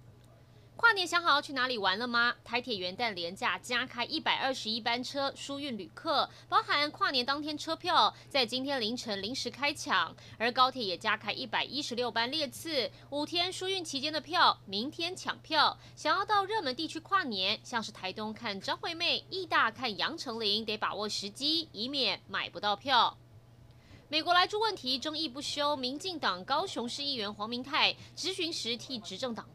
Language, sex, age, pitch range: Chinese, female, 30-49, 215-310 Hz